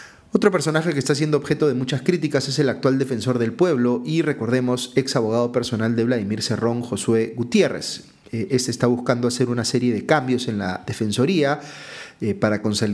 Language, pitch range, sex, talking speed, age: Spanish, 110-130 Hz, male, 170 wpm, 30-49